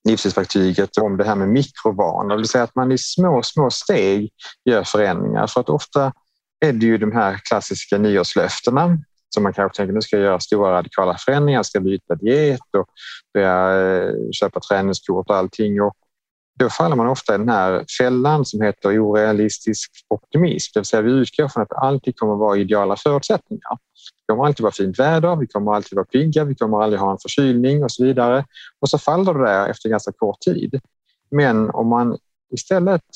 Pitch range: 100-135 Hz